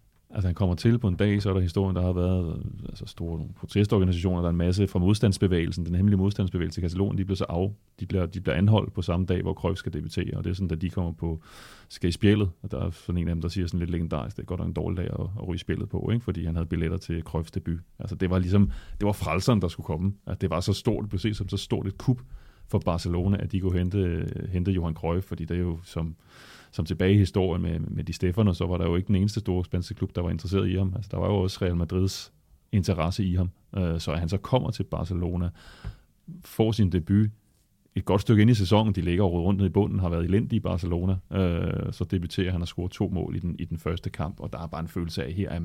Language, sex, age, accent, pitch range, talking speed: Danish, male, 30-49, native, 85-100 Hz, 265 wpm